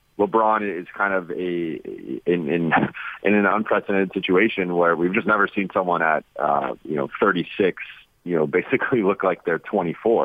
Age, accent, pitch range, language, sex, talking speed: 30-49, American, 85-105 Hz, English, male, 170 wpm